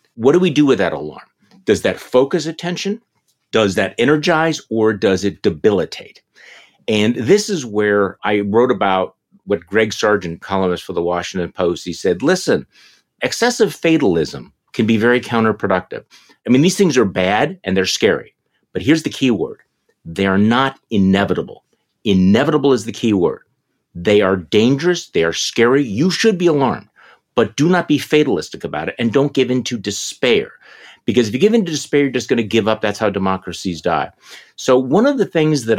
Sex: male